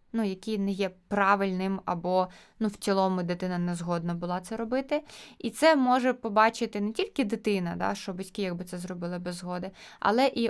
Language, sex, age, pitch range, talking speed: Ukrainian, female, 20-39, 195-245 Hz, 185 wpm